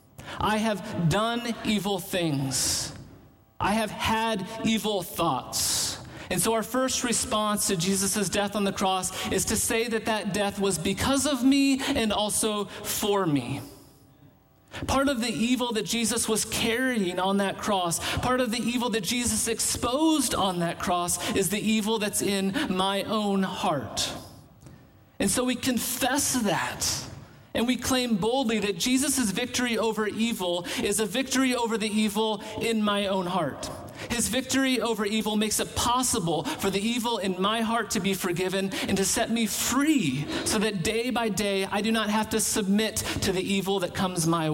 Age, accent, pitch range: 40-59, American, 190-230 Hz